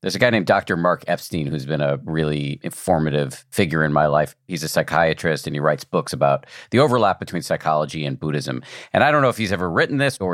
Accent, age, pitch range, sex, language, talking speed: American, 50-69, 85-125 Hz, male, English, 230 wpm